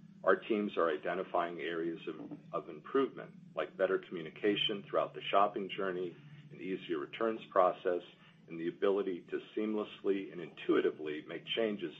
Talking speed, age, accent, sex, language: 140 wpm, 40-59, American, male, English